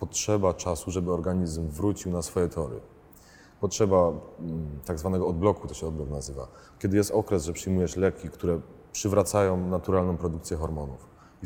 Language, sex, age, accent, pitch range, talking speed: Polish, male, 30-49, native, 80-105 Hz, 145 wpm